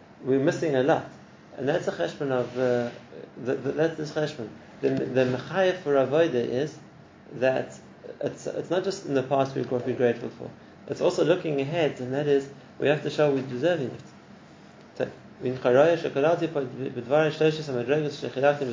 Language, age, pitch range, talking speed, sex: English, 30-49, 125-150 Hz, 150 wpm, male